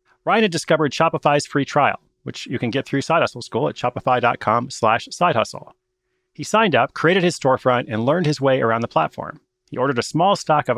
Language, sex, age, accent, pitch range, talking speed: English, male, 30-49, American, 125-165 Hz, 200 wpm